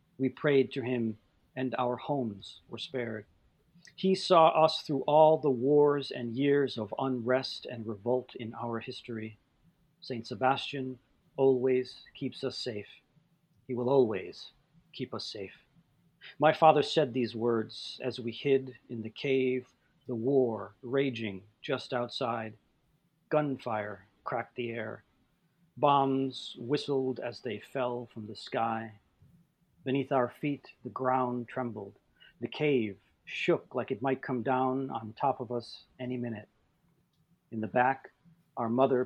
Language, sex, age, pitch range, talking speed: English, male, 40-59, 115-140 Hz, 140 wpm